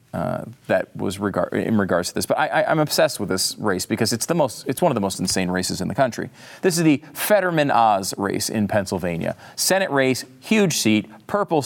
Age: 40-59